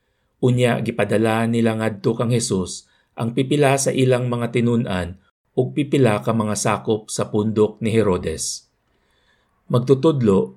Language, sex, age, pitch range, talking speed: Filipino, male, 50-69, 100-125 Hz, 125 wpm